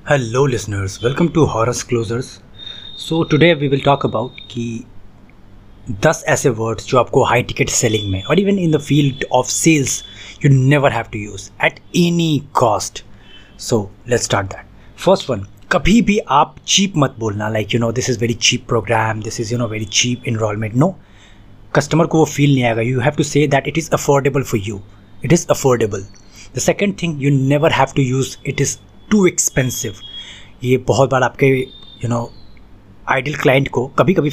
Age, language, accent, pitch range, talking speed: 30-49, Hindi, native, 110-145 Hz, 185 wpm